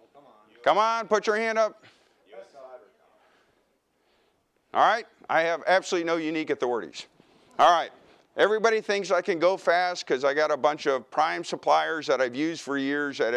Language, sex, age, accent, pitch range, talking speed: English, male, 50-69, American, 130-165 Hz, 160 wpm